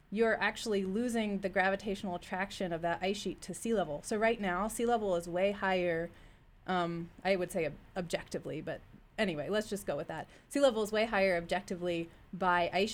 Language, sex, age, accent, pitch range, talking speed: English, female, 20-39, American, 170-210 Hz, 195 wpm